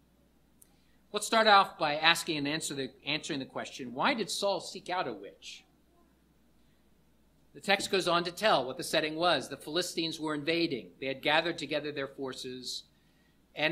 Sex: male